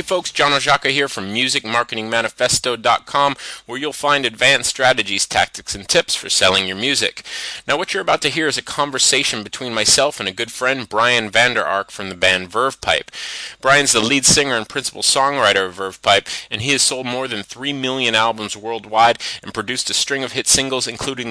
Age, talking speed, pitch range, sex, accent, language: 30-49, 200 wpm, 105-135 Hz, male, American, English